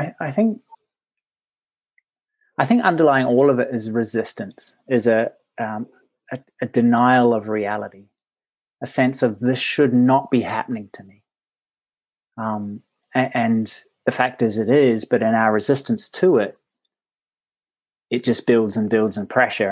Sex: male